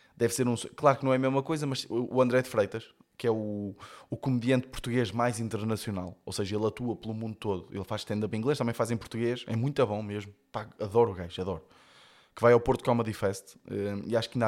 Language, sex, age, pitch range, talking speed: Portuguese, male, 20-39, 105-140 Hz, 240 wpm